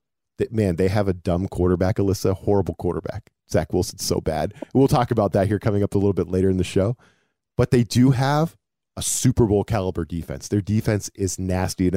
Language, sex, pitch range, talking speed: English, male, 95-120 Hz, 205 wpm